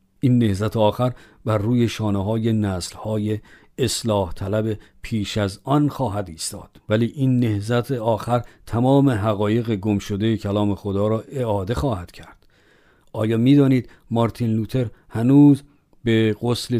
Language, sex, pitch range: Persian, male, 105-130 Hz